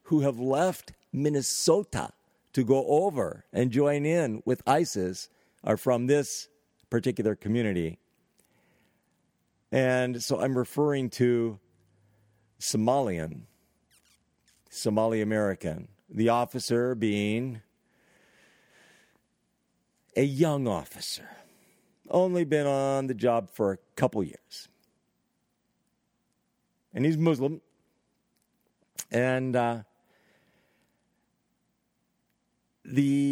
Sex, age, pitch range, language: male, 50-69, 110-145 Hz, English